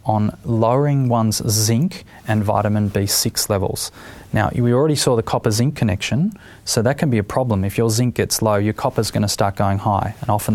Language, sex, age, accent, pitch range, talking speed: English, male, 20-39, Australian, 105-125 Hz, 210 wpm